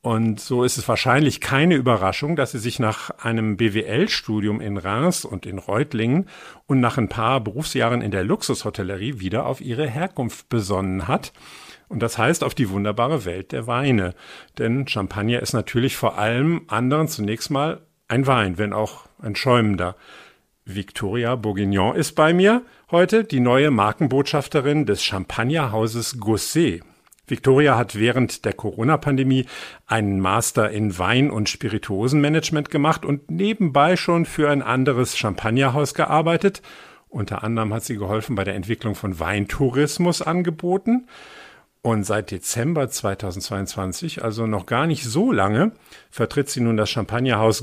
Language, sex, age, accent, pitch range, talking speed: German, male, 50-69, German, 105-145 Hz, 140 wpm